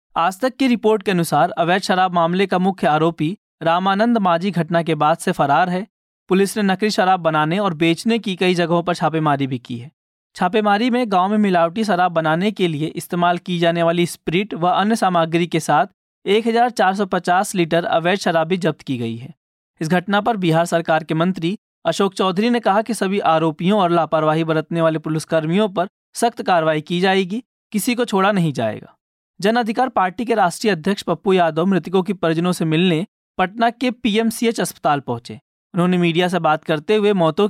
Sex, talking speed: male, 190 wpm